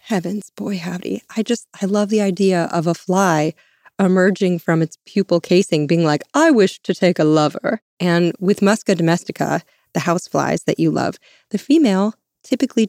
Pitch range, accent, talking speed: 170-210 Hz, American, 175 wpm